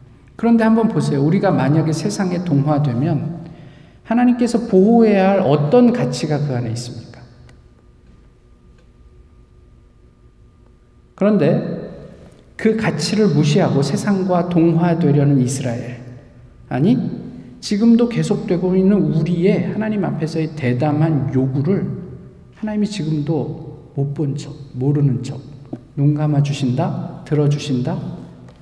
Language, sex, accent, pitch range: Korean, male, native, 140-230 Hz